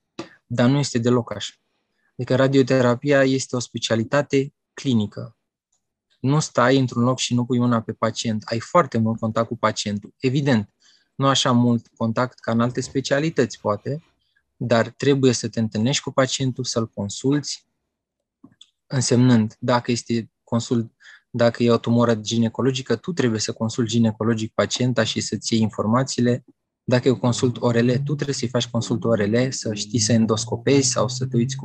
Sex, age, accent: male, 20-39, native